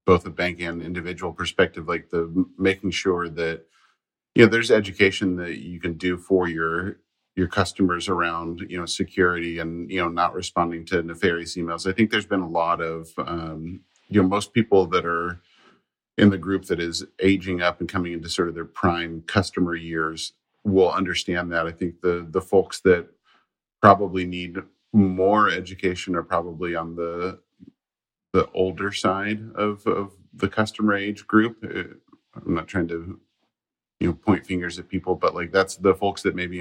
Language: English